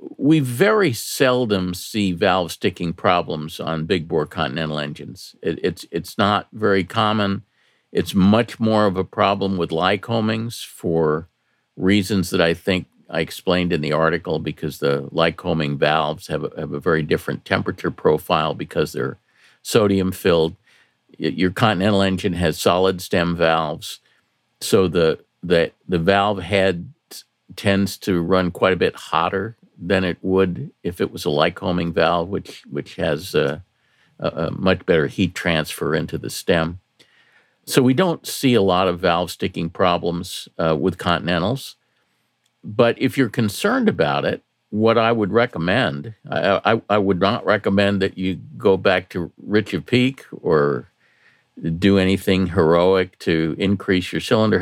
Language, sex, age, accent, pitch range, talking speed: English, male, 50-69, American, 85-105 Hz, 150 wpm